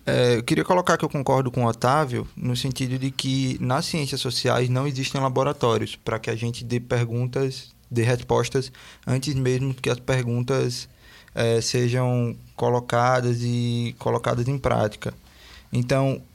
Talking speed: 150 wpm